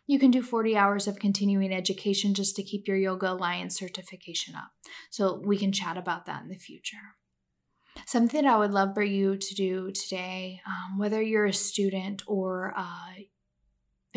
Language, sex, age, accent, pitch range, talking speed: English, female, 10-29, American, 195-225 Hz, 175 wpm